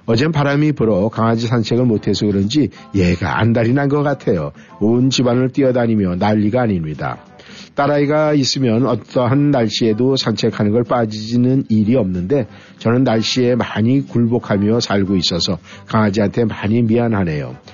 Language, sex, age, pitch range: Korean, male, 50-69, 110-135 Hz